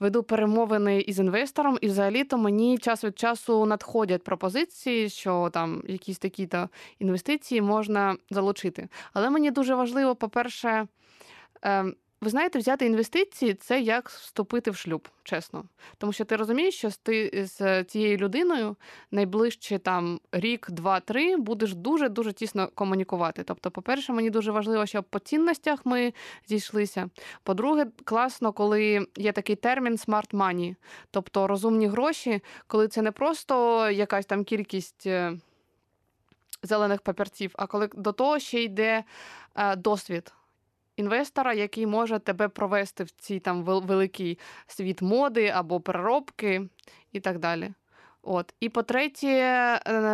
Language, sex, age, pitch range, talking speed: Ukrainian, female, 20-39, 195-235 Hz, 130 wpm